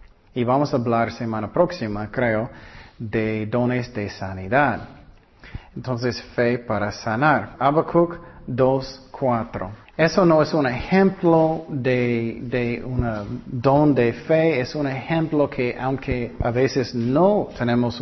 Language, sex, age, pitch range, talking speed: Spanish, male, 40-59, 120-160 Hz, 125 wpm